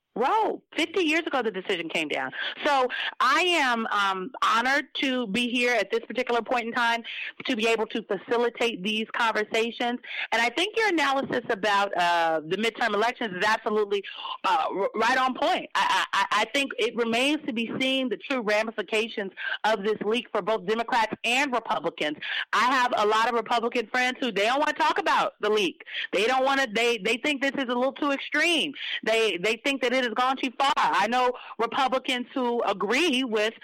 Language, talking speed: English, 195 wpm